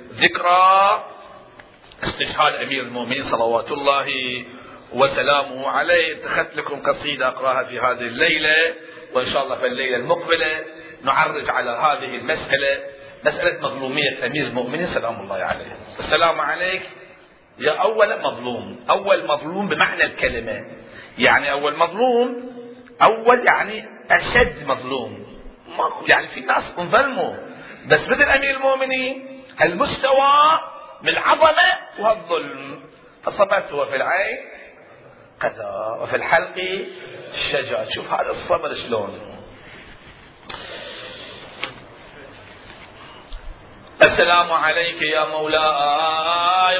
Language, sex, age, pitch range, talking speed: Arabic, male, 40-59, 150-245 Hz, 95 wpm